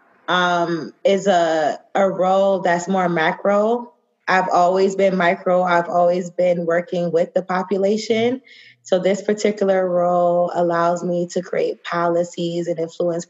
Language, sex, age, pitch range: English, female, 20-39, 175-215 Hz